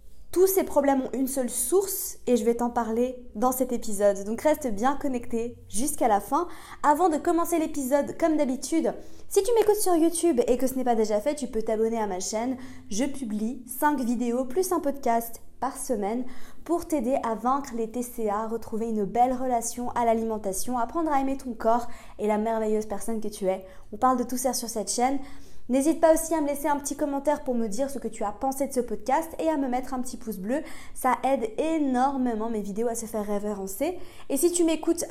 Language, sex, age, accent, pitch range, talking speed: French, female, 20-39, French, 230-280 Hz, 220 wpm